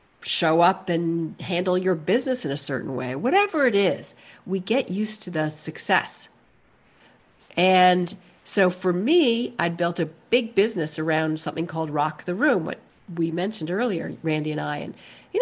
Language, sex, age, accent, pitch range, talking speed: English, female, 50-69, American, 155-205 Hz, 170 wpm